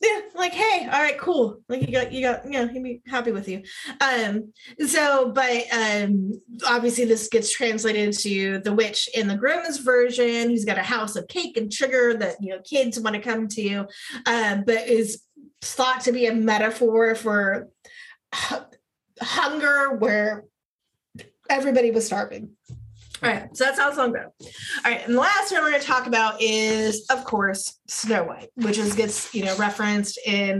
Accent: American